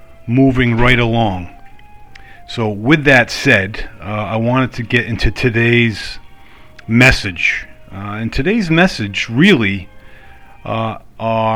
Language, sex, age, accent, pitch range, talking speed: English, male, 40-59, American, 100-115 Hz, 110 wpm